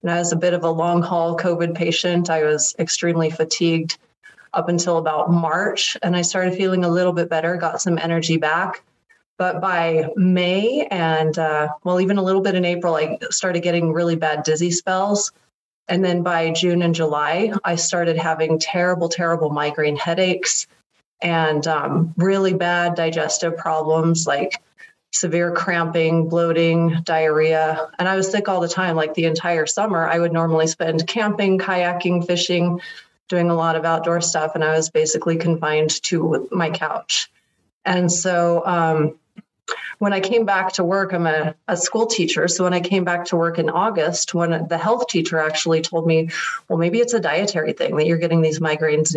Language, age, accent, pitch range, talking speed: English, 30-49, American, 160-180 Hz, 180 wpm